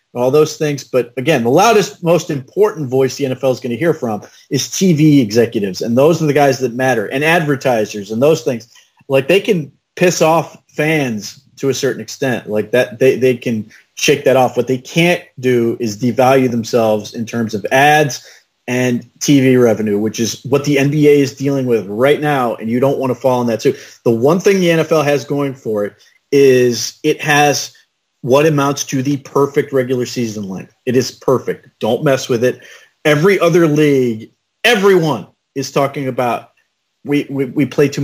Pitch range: 120-145 Hz